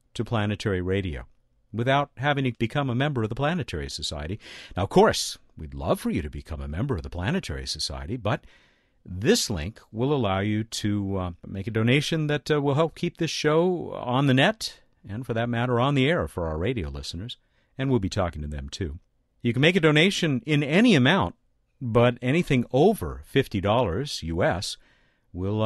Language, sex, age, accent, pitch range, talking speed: English, male, 50-69, American, 90-135 Hz, 190 wpm